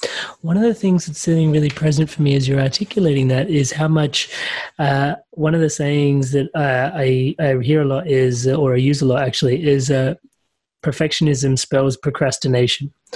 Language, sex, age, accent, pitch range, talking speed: English, male, 20-39, Australian, 140-170 Hz, 185 wpm